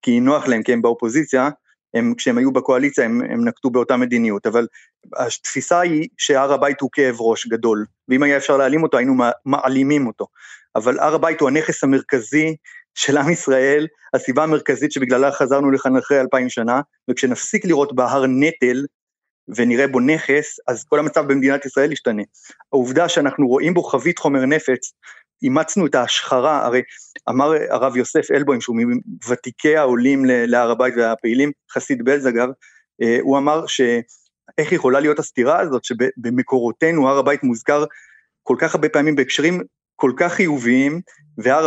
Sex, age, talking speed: male, 30-49, 155 wpm